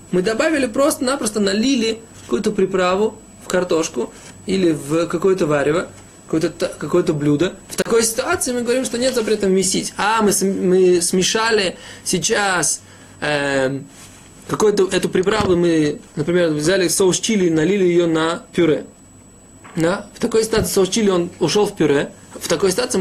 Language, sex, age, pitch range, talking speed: Russian, male, 20-39, 160-210 Hz, 145 wpm